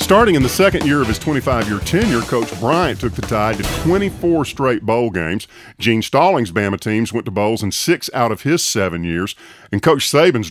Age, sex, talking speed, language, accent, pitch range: 50-69, male, 205 wpm, English, American, 105-140 Hz